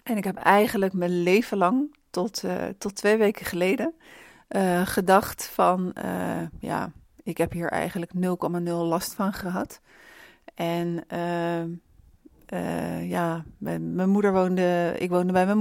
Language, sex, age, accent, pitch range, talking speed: Dutch, female, 40-59, Dutch, 170-200 Hz, 145 wpm